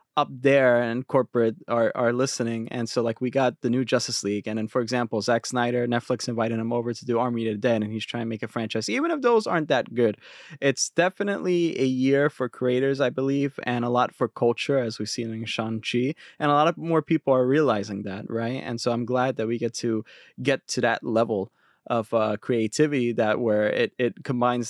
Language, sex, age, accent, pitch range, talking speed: English, male, 20-39, American, 115-135 Hz, 225 wpm